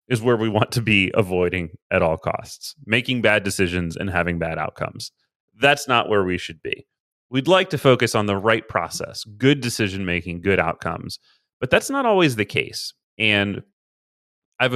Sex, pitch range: male, 95-125 Hz